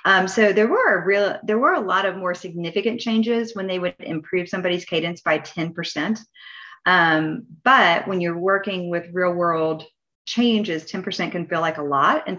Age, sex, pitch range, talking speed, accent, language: 30-49, female, 165-205 Hz, 170 wpm, American, English